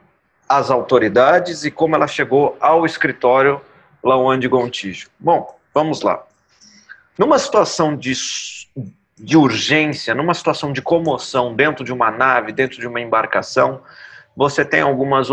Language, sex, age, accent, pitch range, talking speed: Portuguese, male, 40-59, Brazilian, 125-160 Hz, 135 wpm